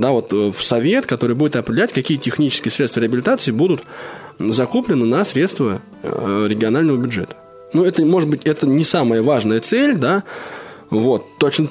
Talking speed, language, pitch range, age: 150 wpm, Russian, 115-155 Hz, 20-39